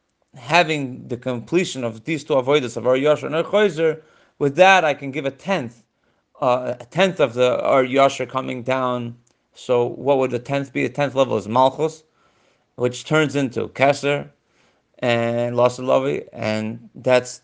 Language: English